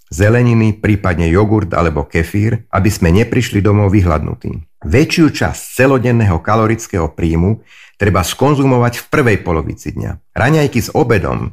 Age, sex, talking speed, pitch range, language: 50-69, male, 125 wpm, 90-120 Hz, Slovak